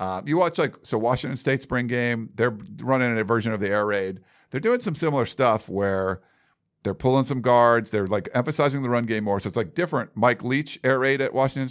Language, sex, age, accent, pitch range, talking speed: English, male, 50-69, American, 100-125 Hz, 225 wpm